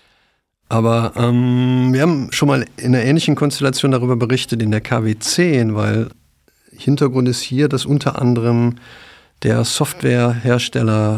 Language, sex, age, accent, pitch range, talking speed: German, male, 50-69, German, 110-125 Hz, 130 wpm